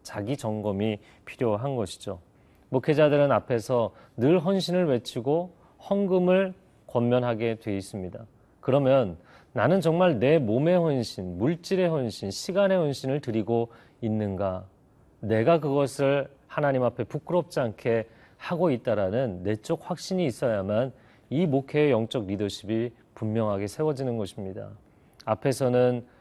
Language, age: Korean, 40-59